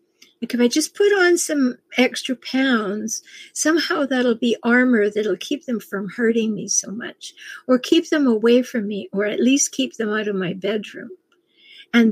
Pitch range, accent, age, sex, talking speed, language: 210-285 Hz, American, 60-79, female, 185 wpm, English